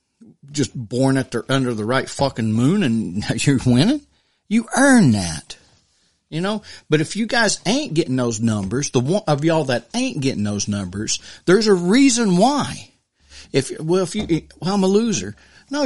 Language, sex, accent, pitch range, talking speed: English, male, American, 115-170 Hz, 180 wpm